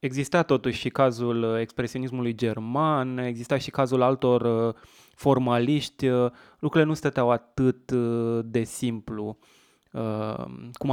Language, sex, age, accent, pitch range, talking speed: Romanian, male, 20-39, native, 120-135 Hz, 100 wpm